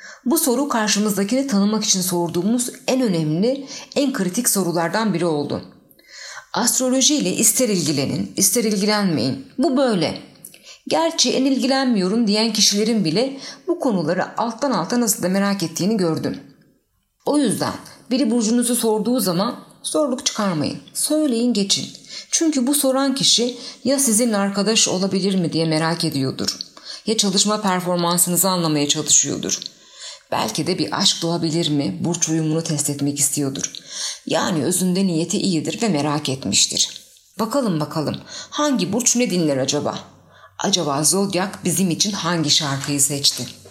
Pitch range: 160-235 Hz